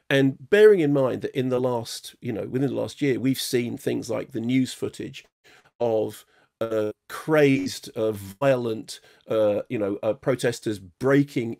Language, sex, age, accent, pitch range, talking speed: English, male, 40-59, British, 115-140 Hz, 165 wpm